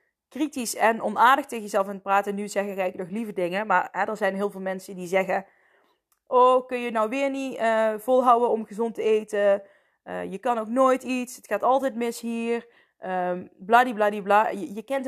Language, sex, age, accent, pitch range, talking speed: Dutch, female, 20-39, Dutch, 195-250 Hz, 205 wpm